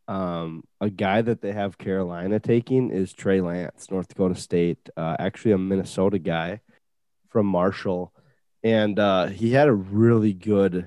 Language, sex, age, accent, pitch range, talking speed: English, male, 20-39, American, 95-115 Hz, 155 wpm